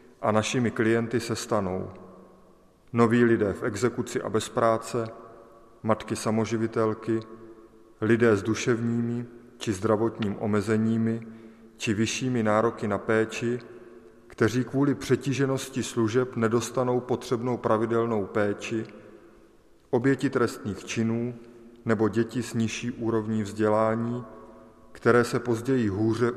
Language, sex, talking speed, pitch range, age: Czech, male, 105 wpm, 110-120 Hz, 30-49